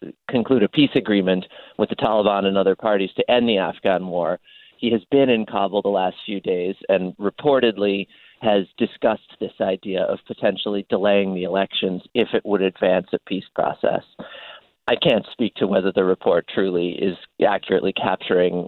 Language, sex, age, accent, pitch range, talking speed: English, male, 40-59, American, 95-120 Hz, 170 wpm